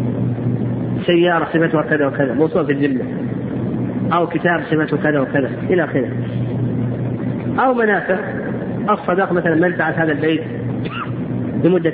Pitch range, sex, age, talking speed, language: 145-180 Hz, male, 40-59, 105 wpm, Arabic